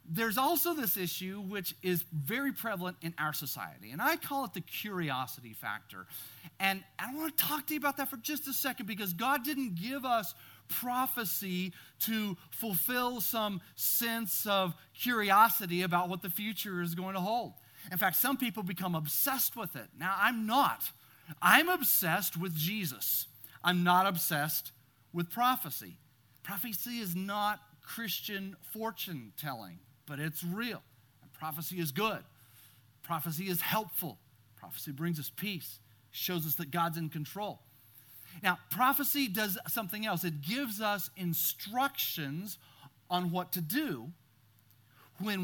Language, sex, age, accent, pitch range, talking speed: English, male, 40-59, American, 150-215 Hz, 145 wpm